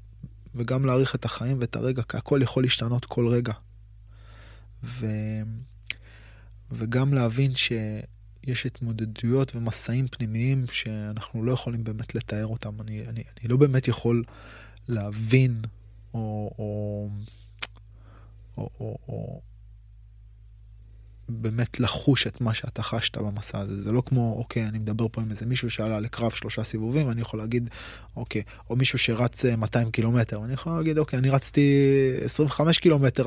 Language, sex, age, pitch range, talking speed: Hebrew, male, 20-39, 110-125 Hz, 135 wpm